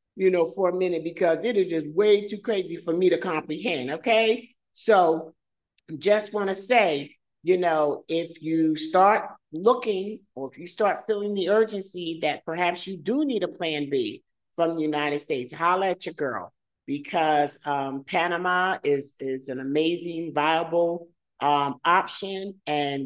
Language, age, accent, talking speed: English, 50-69, American, 160 wpm